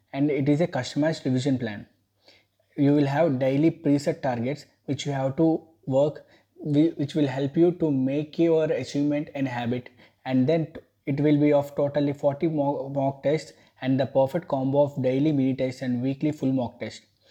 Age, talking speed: 20-39, 175 wpm